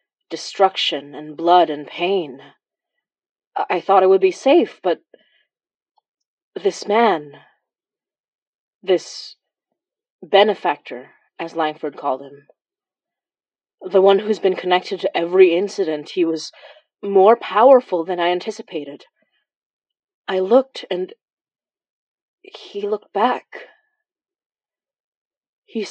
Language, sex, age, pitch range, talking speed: English, female, 30-49, 180-260 Hz, 95 wpm